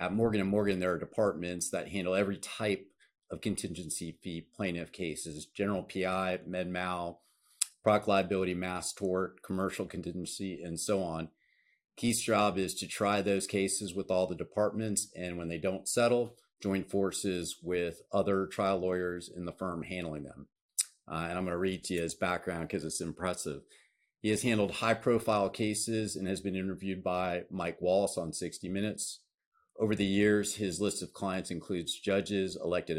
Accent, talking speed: American, 170 wpm